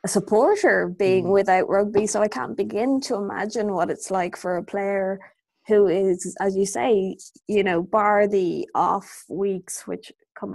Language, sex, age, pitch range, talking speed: English, female, 20-39, 195-225 Hz, 165 wpm